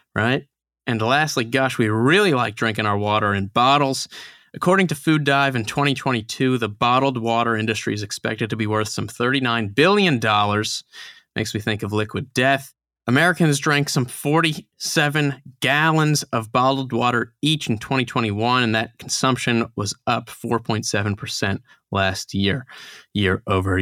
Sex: male